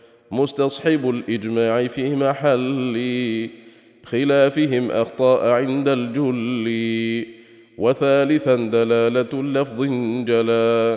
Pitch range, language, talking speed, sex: 115-150 Hz, English, 65 wpm, male